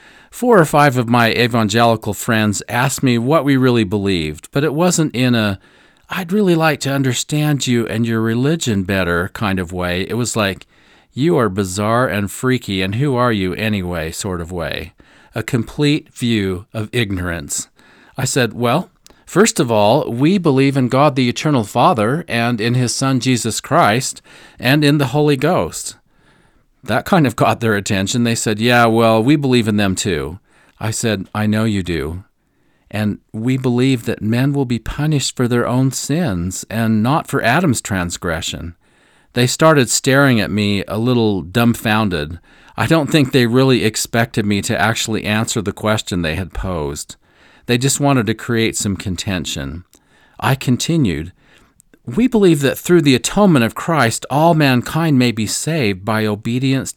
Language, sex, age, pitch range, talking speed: English, male, 40-59, 105-135 Hz, 170 wpm